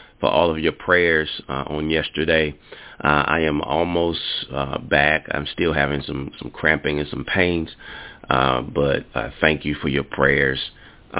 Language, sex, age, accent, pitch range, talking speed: English, male, 30-49, American, 70-90 Hz, 165 wpm